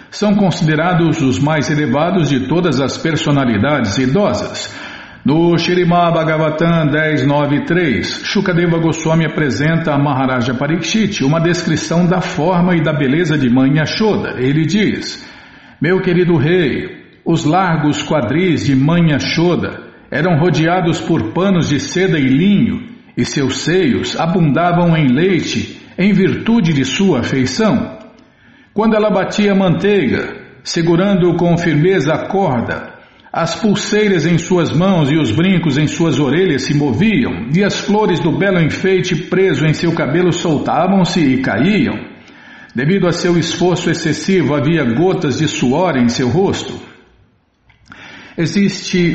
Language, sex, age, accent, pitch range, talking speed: Portuguese, male, 60-79, Brazilian, 145-180 Hz, 130 wpm